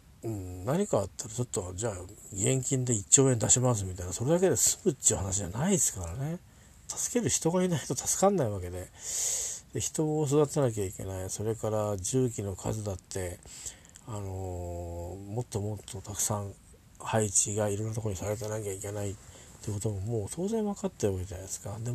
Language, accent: Japanese, native